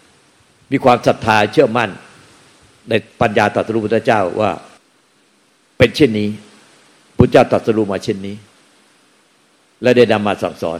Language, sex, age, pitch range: Thai, male, 60-79, 95-115 Hz